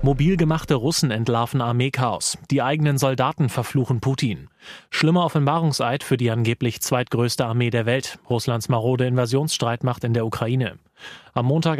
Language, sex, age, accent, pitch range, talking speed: German, male, 30-49, German, 120-135 Hz, 130 wpm